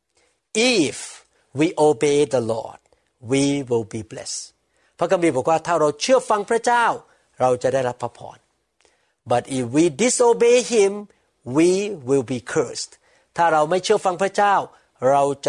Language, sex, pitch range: Thai, male, 130-200 Hz